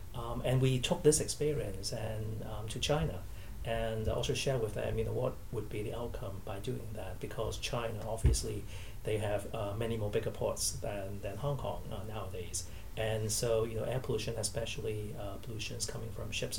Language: English